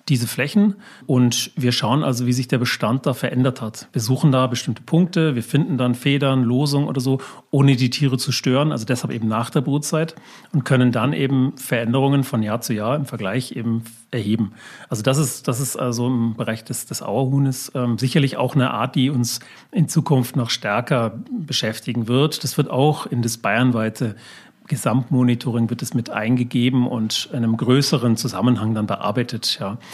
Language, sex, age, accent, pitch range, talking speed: German, male, 40-59, German, 120-140 Hz, 180 wpm